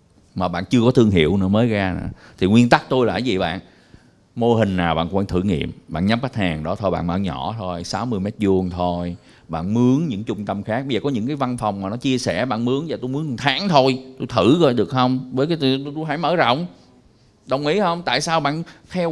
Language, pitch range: Vietnamese, 100-140 Hz